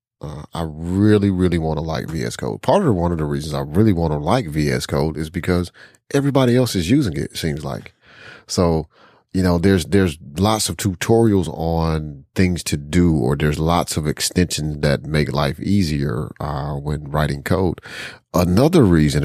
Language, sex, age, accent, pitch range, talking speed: English, male, 30-49, American, 75-100 Hz, 185 wpm